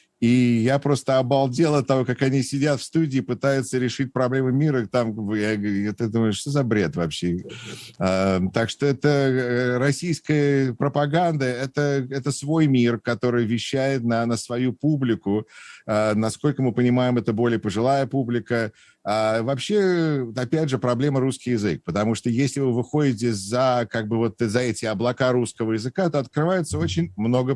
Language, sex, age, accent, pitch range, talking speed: Russian, male, 50-69, native, 110-135 Hz, 160 wpm